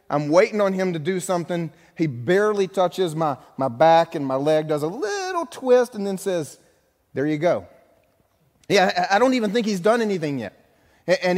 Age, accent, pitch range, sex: 30-49, American, 115-175 Hz, male